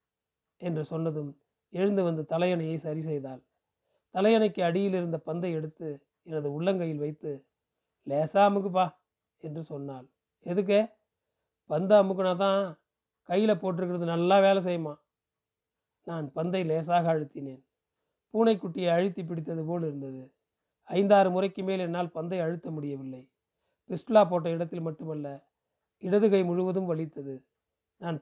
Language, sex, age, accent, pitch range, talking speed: Tamil, male, 30-49, native, 150-190 Hz, 110 wpm